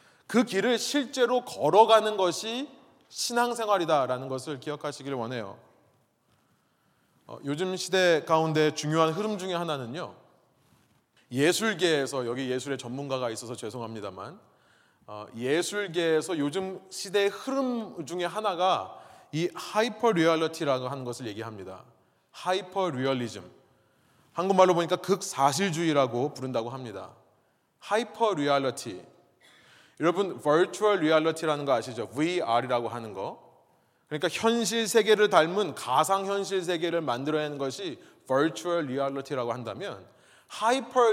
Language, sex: Korean, male